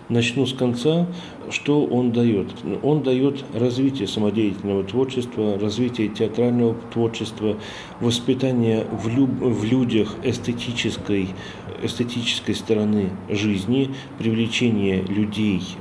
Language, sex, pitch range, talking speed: Russian, male, 100-125 Hz, 85 wpm